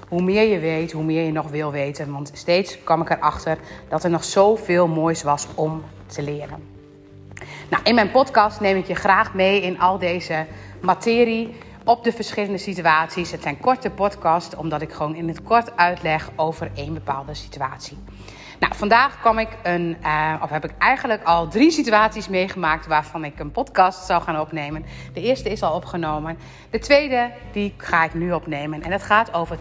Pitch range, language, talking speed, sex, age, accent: 155-205 Hz, Dutch, 185 wpm, female, 30-49, Dutch